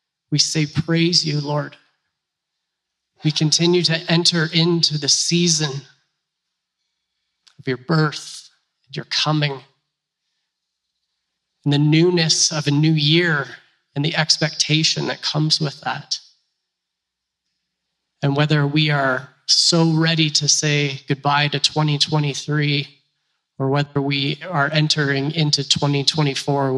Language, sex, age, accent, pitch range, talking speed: English, male, 30-49, American, 135-155 Hz, 110 wpm